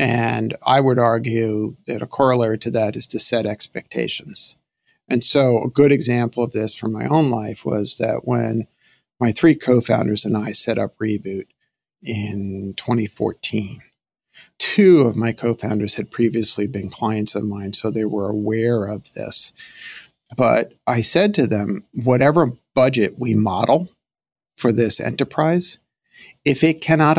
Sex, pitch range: male, 110-135 Hz